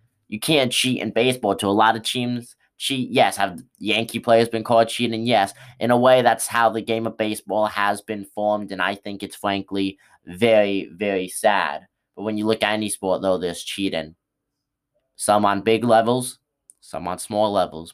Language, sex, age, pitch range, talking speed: English, male, 20-39, 95-110 Hz, 190 wpm